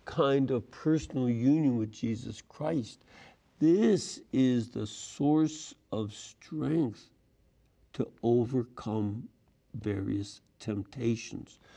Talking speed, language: 85 wpm, English